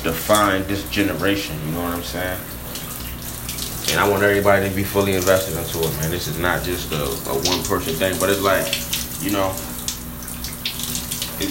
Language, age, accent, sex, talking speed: English, 20-39, American, male, 170 wpm